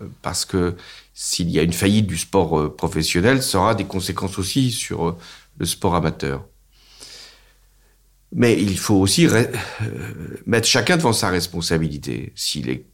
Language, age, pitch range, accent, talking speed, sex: French, 60-79, 75-100 Hz, French, 145 wpm, male